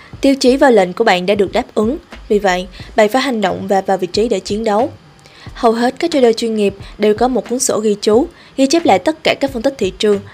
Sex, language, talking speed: female, Vietnamese, 265 wpm